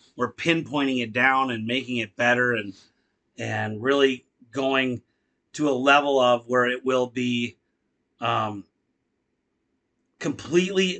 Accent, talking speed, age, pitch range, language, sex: American, 120 wpm, 30-49, 115-145 Hz, English, male